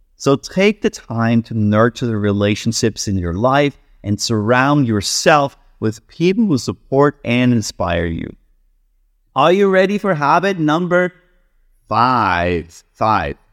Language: English